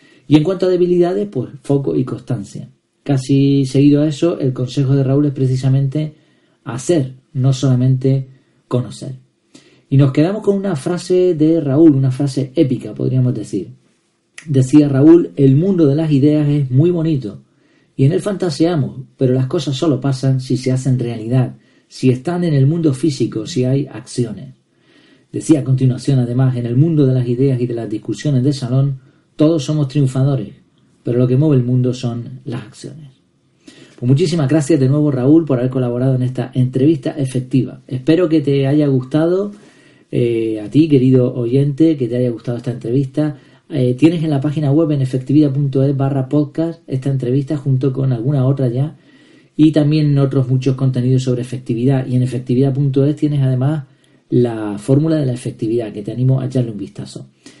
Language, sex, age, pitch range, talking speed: Spanish, male, 40-59, 130-150 Hz, 175 wpm